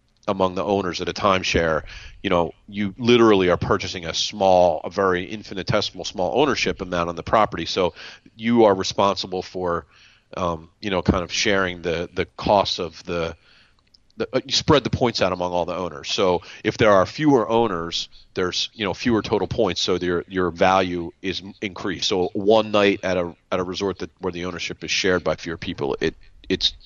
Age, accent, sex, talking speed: 30-49, American, male, 195 wpm